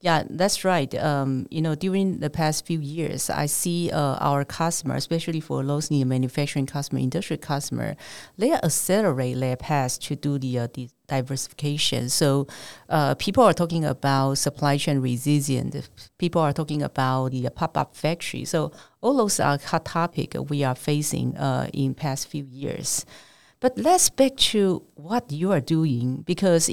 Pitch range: 135-165 Hz